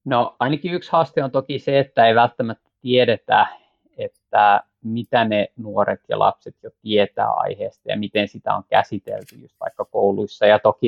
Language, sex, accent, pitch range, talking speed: Finnish, male, native, 105-125 Hz, 165 wpm